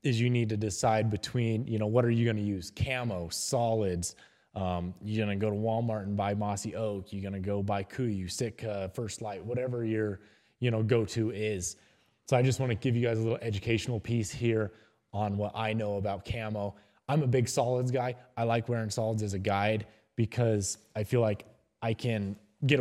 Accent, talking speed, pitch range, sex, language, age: American, 205 wpm, 95-115 Hz, male, English, 20-39